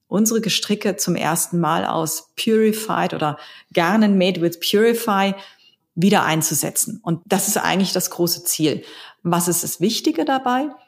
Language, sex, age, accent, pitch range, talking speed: German, female, 40-59, German, 165-200 Hz, 145 wpm